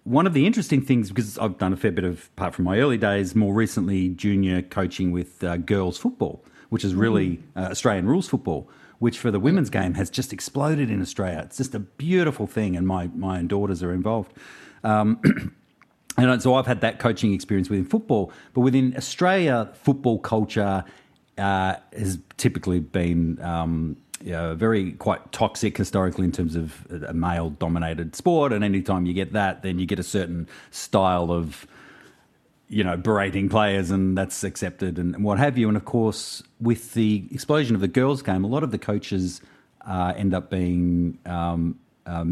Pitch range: 90-115 Hz